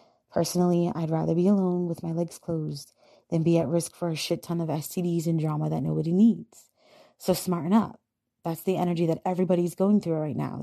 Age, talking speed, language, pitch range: 20-39, 205 wpm, English, 165-195 Hz